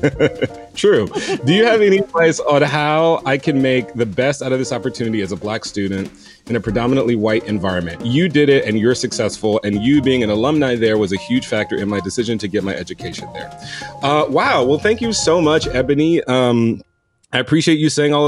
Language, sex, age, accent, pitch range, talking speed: English, male, 30-49, American, 115-155 Hz, 210 wpm